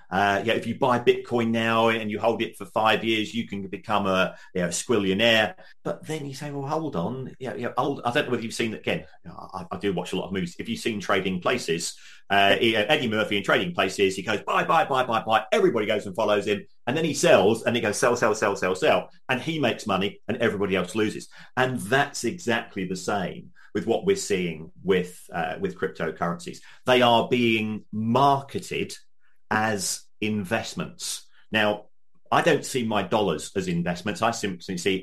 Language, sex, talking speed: English, male, 205 wpm